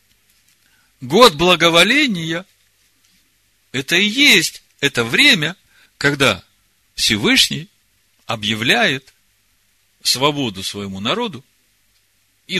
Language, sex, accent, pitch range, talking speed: Russian, male, native, 100-150 Hz, 65 wpm